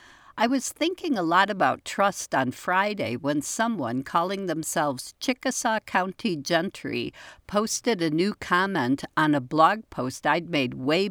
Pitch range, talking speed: 140-205 Hz, 145 wpm